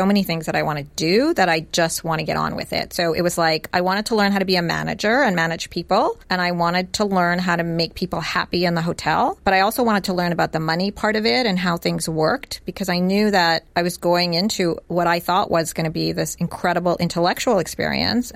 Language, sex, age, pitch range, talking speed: English, female, 30-49, 170-200 Hz, 260 wpm